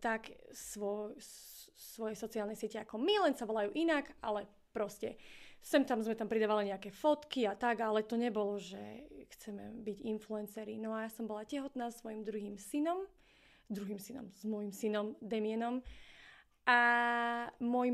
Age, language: 20-39, Slovak